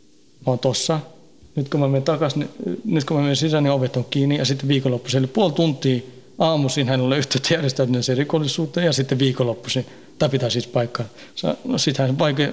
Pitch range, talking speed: 125-145 Hz, 185 wpm